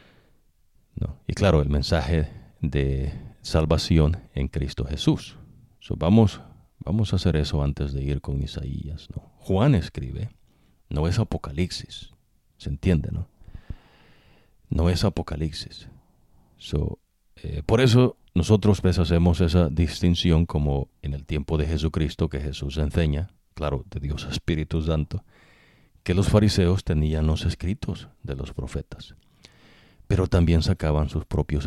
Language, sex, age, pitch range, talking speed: English, male, 50-69, 75-90 Hz, 135 wpm